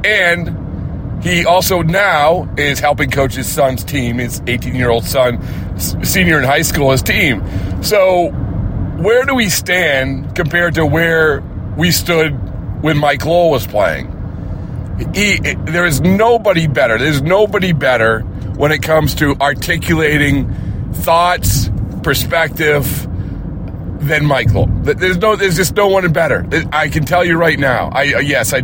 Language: English